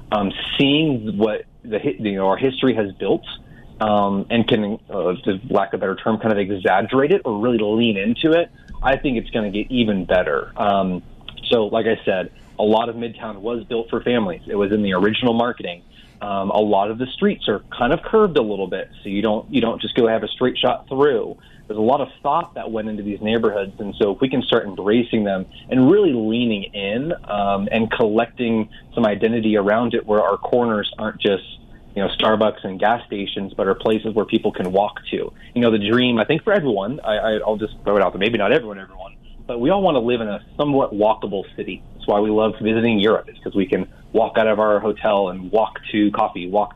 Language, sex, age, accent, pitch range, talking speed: English, male, 30-49, American, 105-120 Hz, 230 wpm